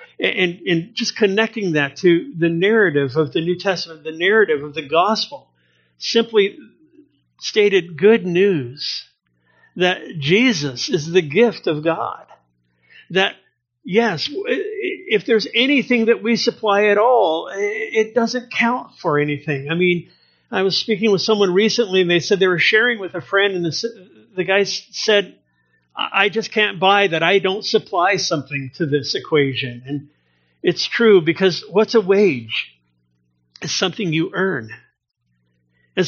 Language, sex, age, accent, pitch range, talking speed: English, male, 50-69, American, 150-220 Hz, 150 wpm